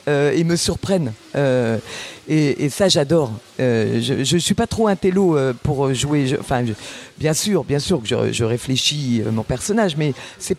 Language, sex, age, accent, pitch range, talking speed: French, female, 50-69, French, 145-200 Hz, 205 wpm